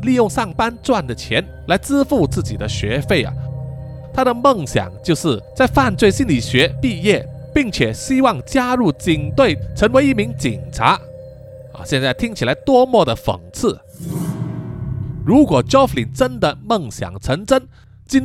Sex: male